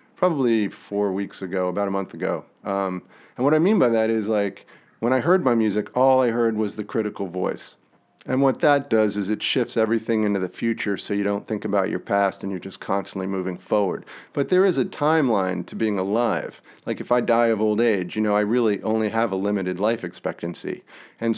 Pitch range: 100-125 Hz